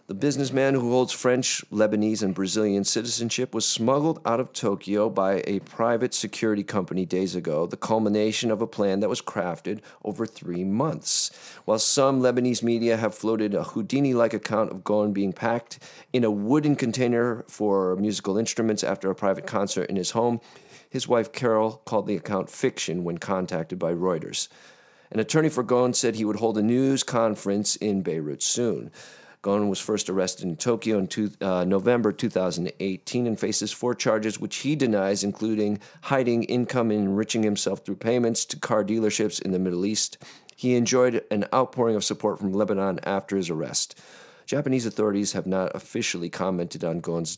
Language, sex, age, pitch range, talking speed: English, male, 40-59, 100-120 Hz, 170 wpm